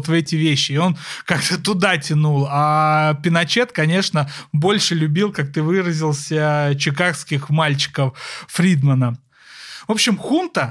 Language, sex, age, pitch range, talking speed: Russian, male, 30-49, 155-205 Hz, 125 wpm